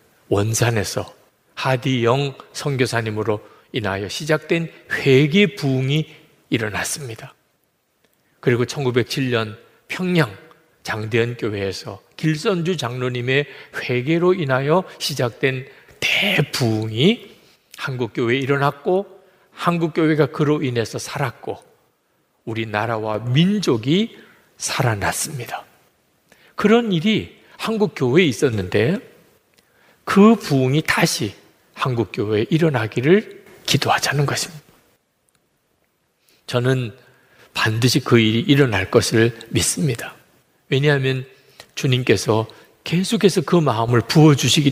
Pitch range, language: 120-165 Hz, Korean